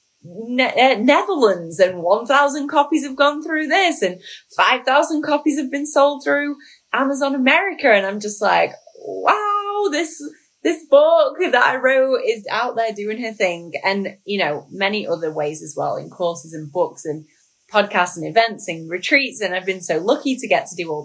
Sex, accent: female, British